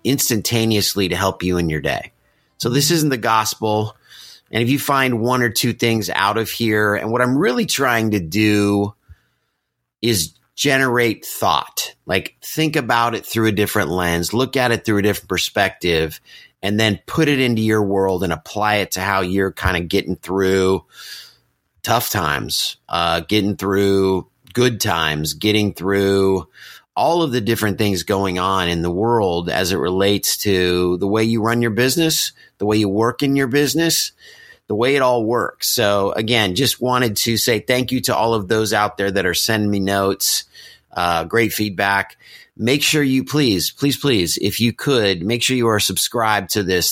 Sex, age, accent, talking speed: male, 30-49, American, 185 wpm